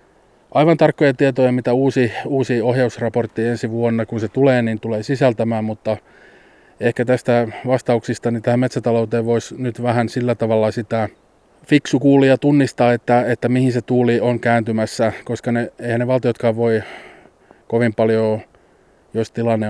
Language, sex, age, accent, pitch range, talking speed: Finnish, male, 30-49, native, 110-125 Hz, 145 wpm